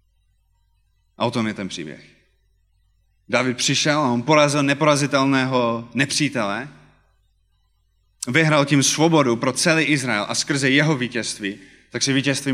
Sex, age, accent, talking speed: male, 30-49, native, 125 wpm